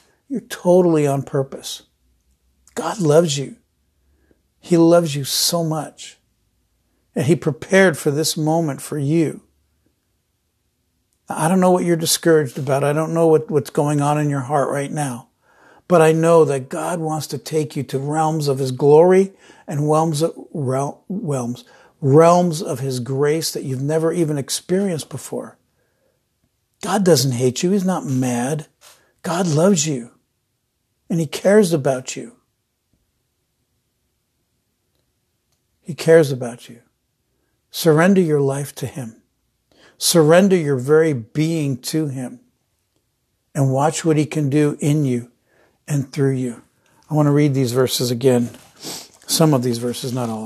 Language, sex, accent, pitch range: English, male, American, 125-160 Hz